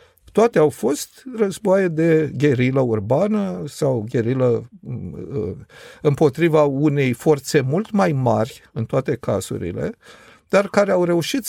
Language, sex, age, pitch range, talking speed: Romanian, male, 50-69, 140-190 Hz, 115 wpm